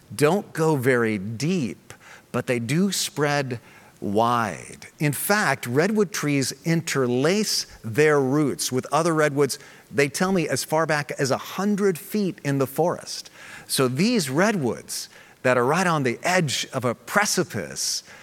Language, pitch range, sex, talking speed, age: English, 120-160 Hz, male, 145 wpm, 40-59